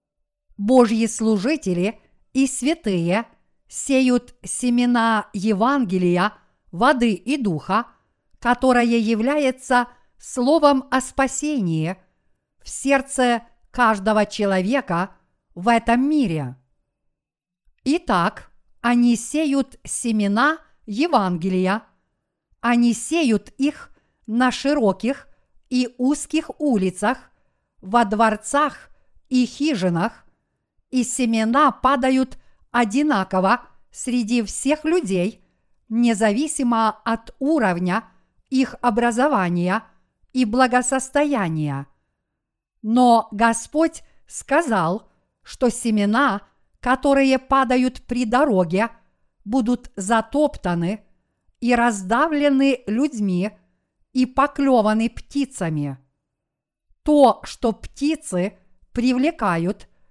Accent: native